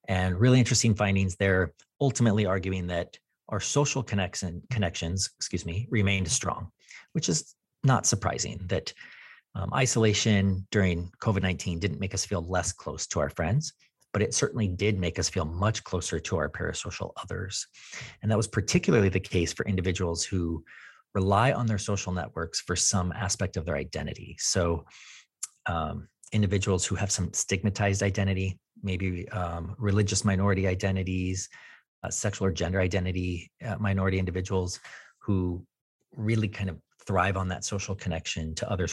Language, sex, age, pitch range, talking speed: English, male, 30-49, 90-105 Hz, 150 wpm